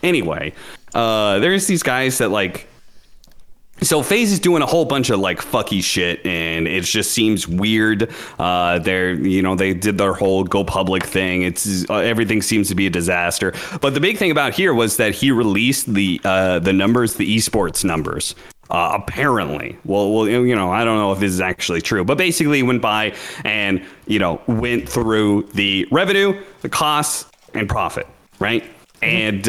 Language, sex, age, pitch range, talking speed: English, male, 30-49, 95-125 Hz, 185 wpm